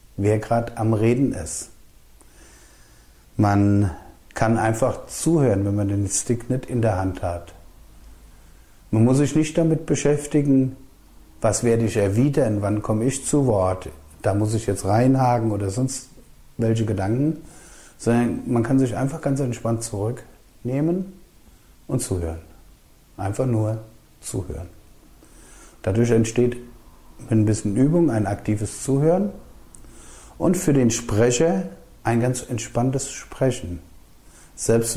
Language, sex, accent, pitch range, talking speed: German, male, German, 95-130 Hz, 125 wpm